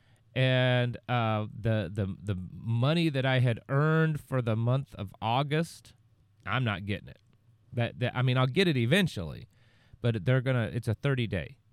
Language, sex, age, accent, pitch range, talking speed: English, male, 30-49, American, 105-135 Hz, 175 wpm